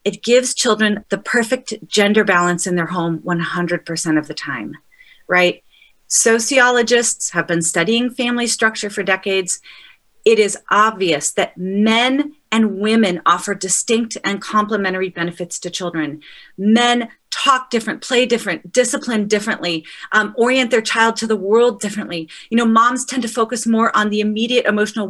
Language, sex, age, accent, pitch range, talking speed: English, female, 30-49, American, 190-240 Hz, 150 wpm